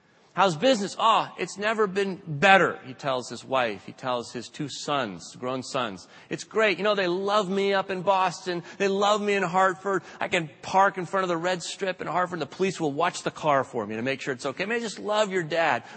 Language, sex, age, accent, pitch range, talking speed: English, male, 30-49, American, 125-180 Hz, 235 wpm